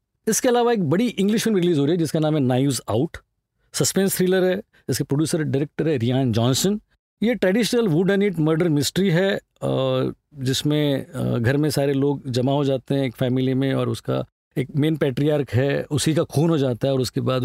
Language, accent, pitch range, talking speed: Hindi, native, 130-180 Hz, 205 wpm